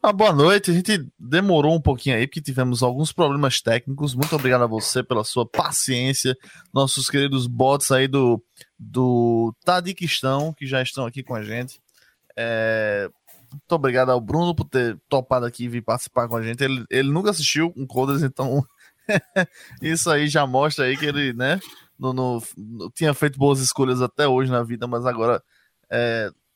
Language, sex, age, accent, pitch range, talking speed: Portuguese, male, 10-29, Brazilian, 125-150 Hz, 180 wpm